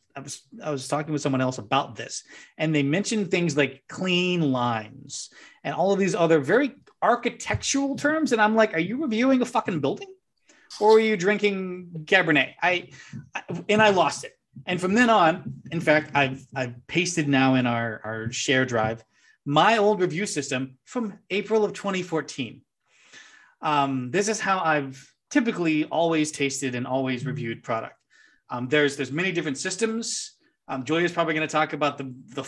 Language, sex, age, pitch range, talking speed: English, male, 30-49, 135-195 Hz, 175 wpm